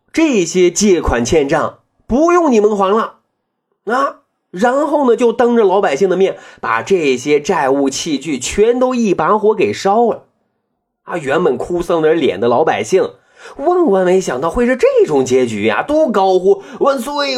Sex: male